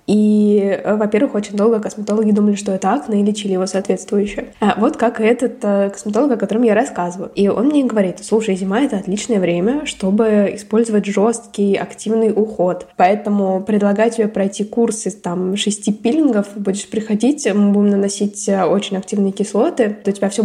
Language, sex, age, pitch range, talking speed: Russian, female, 20-39, 205-235 Hz, 160 wpm